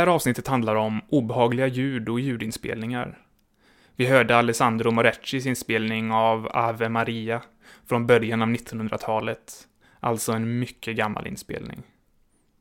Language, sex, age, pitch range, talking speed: English, male, 20-39, 110-125 Hz, 125 wpm